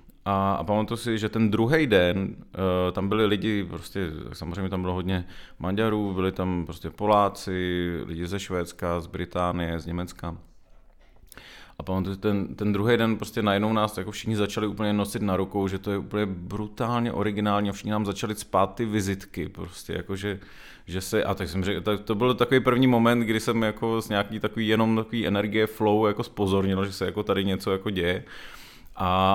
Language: Czech